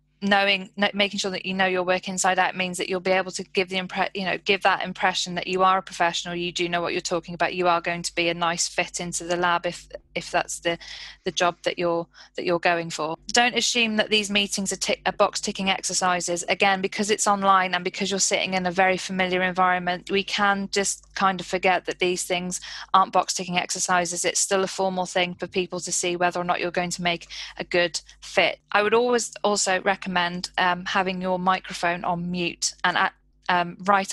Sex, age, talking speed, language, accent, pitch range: female, 20-39, 225 wpm, English, British, 175-195 Hz